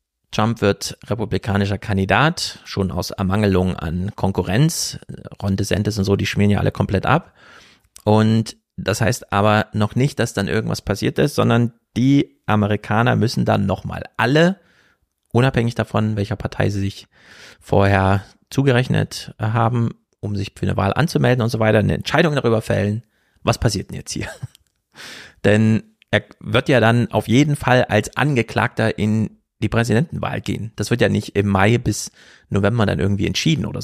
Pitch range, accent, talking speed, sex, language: 100-120 Hz, German, 160 wpm, male, German